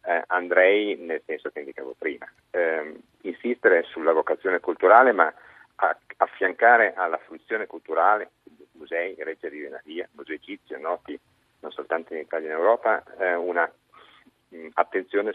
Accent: native